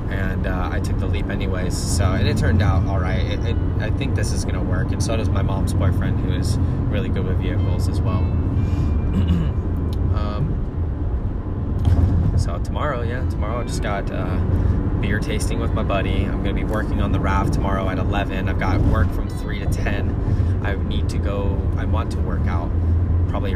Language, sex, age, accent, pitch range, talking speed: English, male, 20-39, American, 90-95 Hz, 195 wpm